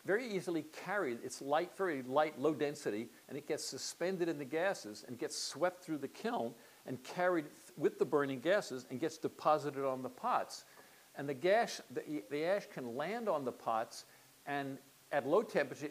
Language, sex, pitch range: English, male, 140-185 Hz